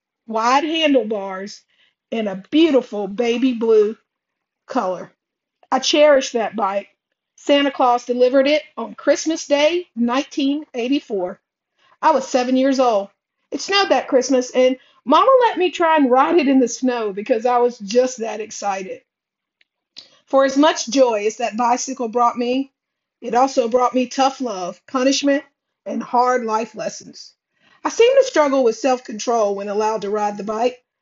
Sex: female